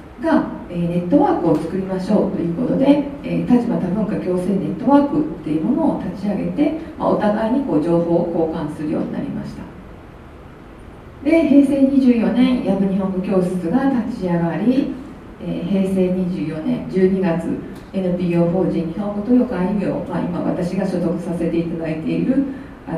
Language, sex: Japanese, female